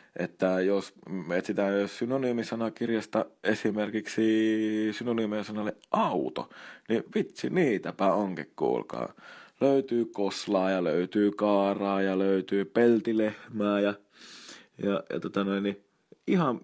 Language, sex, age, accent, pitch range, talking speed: Finnish, male, 20-39, native, 100-115 Hz, 100 wpm